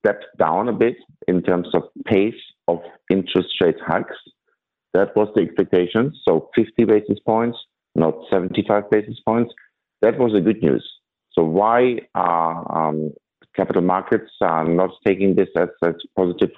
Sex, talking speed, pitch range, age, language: male, 150 wpm, 85-100 Hz, 50-69, English